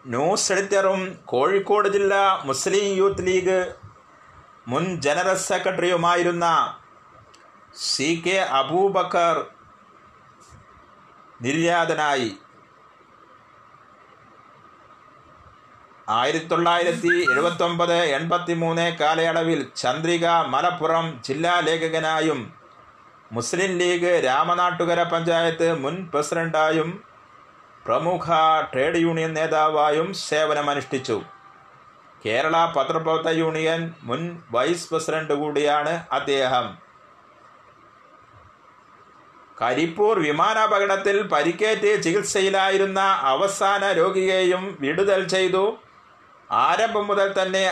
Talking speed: 65 wpm